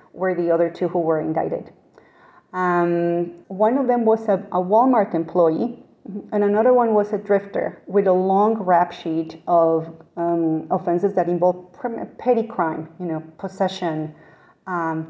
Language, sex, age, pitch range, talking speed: English, female, 40-59, 175-215 Hz, 150 wpm